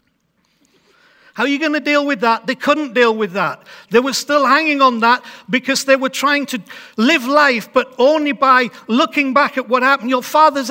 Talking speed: 200 wpm